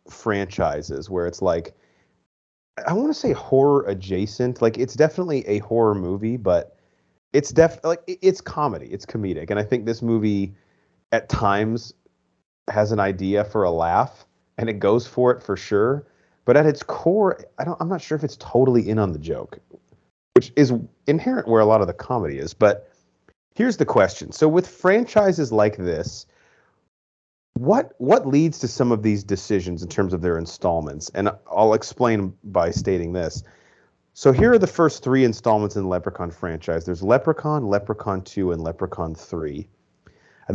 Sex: male